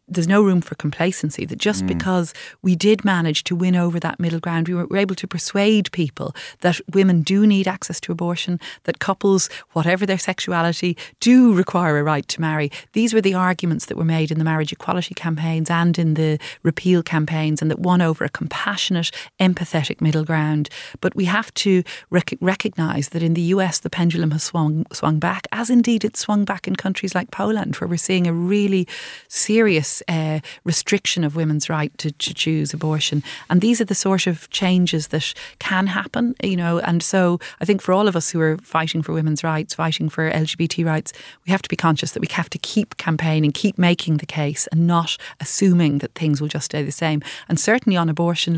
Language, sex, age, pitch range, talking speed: English, female, 30-49, 160-185 Hz, 205 wpm